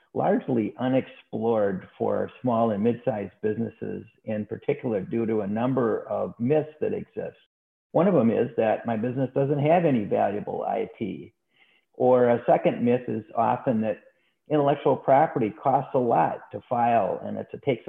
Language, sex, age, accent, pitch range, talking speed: English, male, 50-69, American, 115-140 Hz, 155 wpm